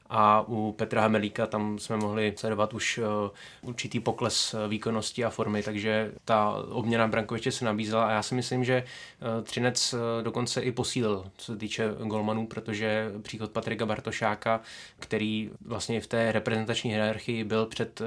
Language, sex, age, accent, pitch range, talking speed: Czech, male, 20-39, native, 105-115 Hz, 150 wpm